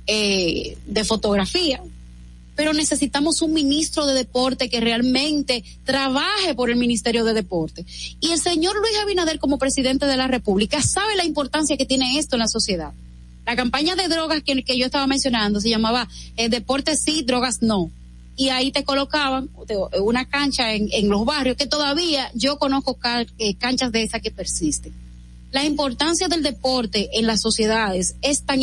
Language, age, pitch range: Spanish, 30-49, 215-280 Hz